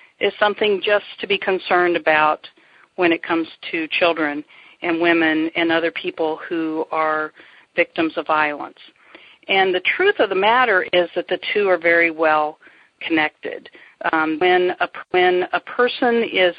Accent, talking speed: American, 155 wpm